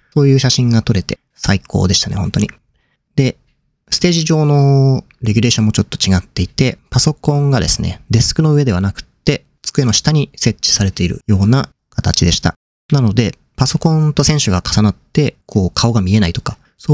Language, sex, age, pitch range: Japanese, male, 40-59, 95-135 Hz